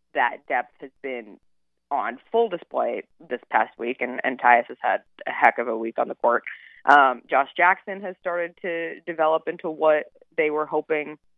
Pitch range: 130-175 Hz